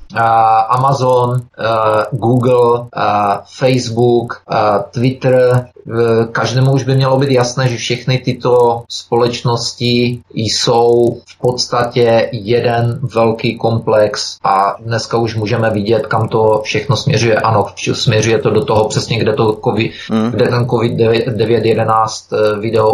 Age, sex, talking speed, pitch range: 30-49, male, 100 wpm, 115-130 Hz